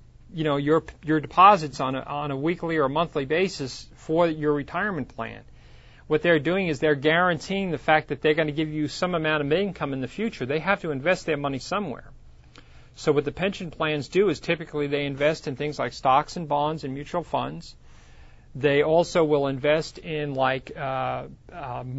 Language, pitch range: English, 140-170 Hz